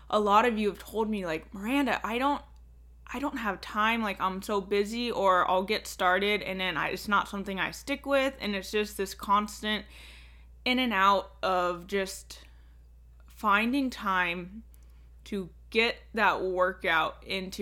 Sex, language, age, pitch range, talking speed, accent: female, English, 20-39, 175-235 Hz, 165 wpm, American